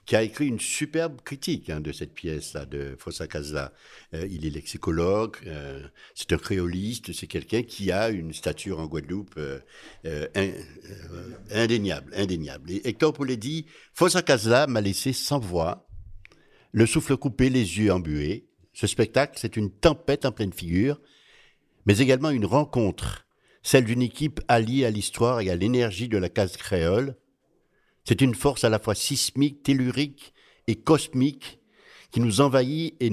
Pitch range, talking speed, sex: 90-130 Hz, 165 wpm, male